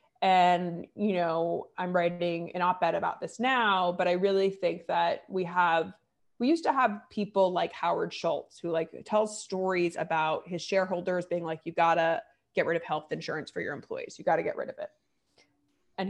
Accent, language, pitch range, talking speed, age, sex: American, English, 170-210 Hz, 200 wpm, 20-39, female